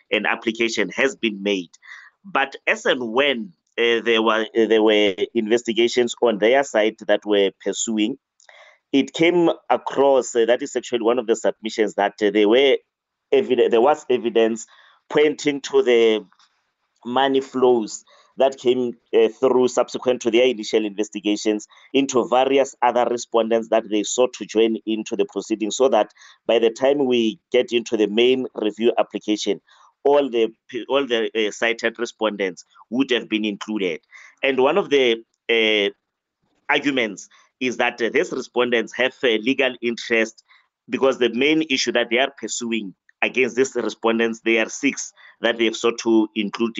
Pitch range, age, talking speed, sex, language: 110-130 Hz, 30-49, 160 wpm, male, English